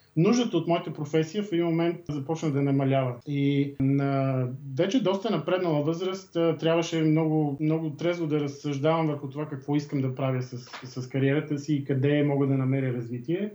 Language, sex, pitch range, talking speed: Bulgarian, male, 140-165 Hz, 170 wpm